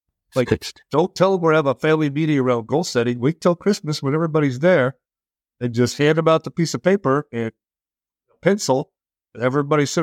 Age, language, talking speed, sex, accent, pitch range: 50-69, English, 190 wpm, male, American, 120-155 Hz